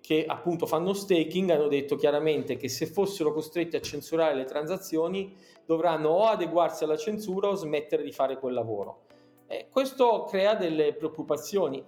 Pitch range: 155-195 Hz